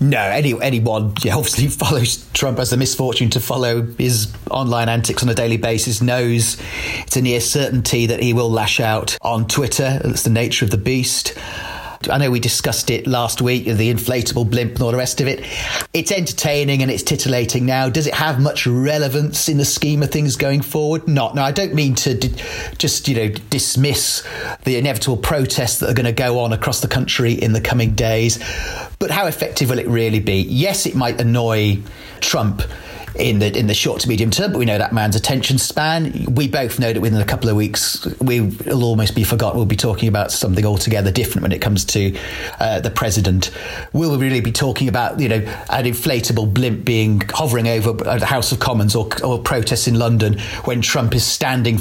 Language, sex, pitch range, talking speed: English, male, 115-135 Hz, 205 wpm